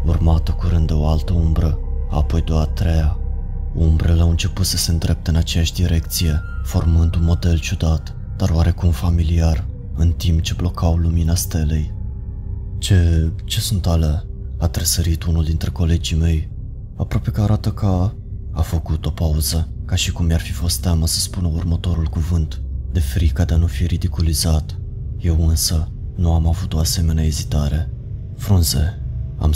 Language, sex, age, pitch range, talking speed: Romanian, male, 20-39, 80-90 Hz, 160 wpm